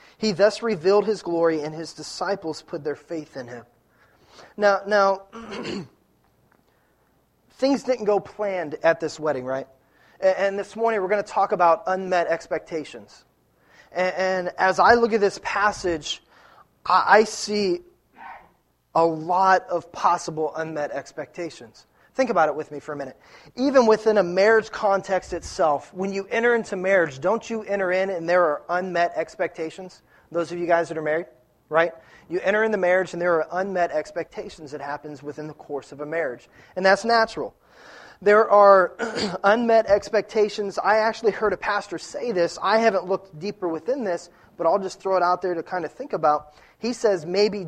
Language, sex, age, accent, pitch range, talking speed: English, male, 30-49, American, 160-205 Hz, 170 wpm